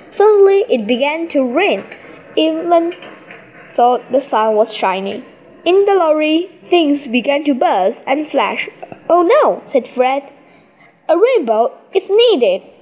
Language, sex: Chinese, female